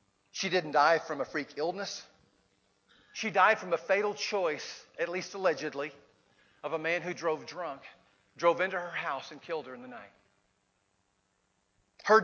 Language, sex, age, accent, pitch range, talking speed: English, male, 40-59, American, 155-200 Hz, 160 wpm